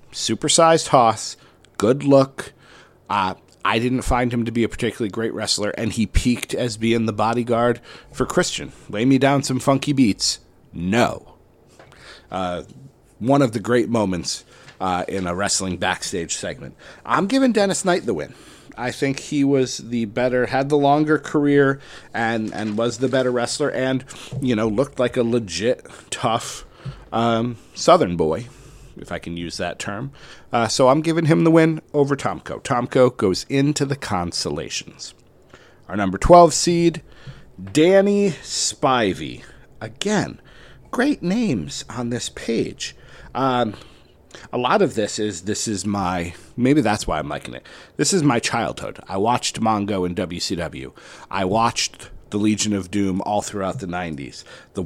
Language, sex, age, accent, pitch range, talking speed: English, male, 40-59, American, 105-140 Hz, 155 wpm